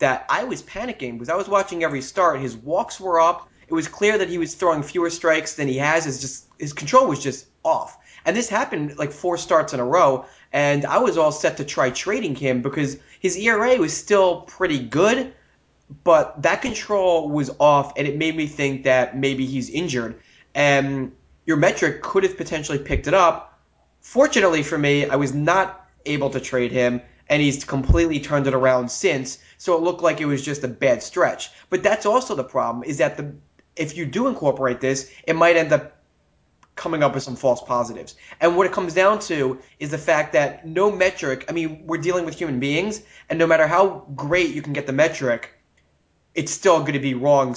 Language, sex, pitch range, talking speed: English, male, 130-170 Hz, 205 wpm